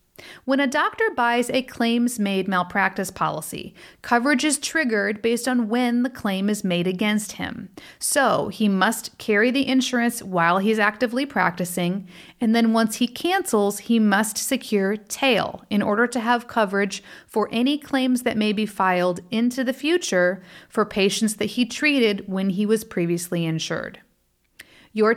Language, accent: English, American